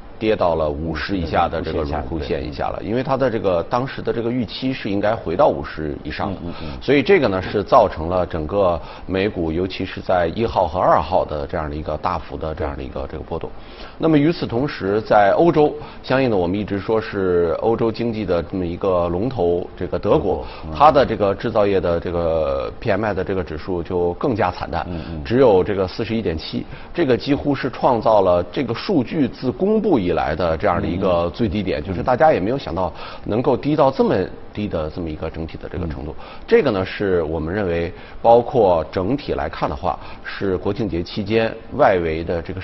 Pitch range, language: 85-115 Hz, Chinese